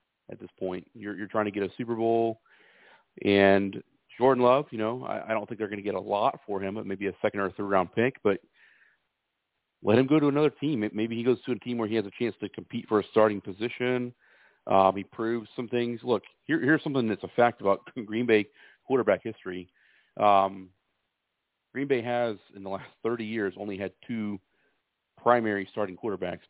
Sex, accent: male, American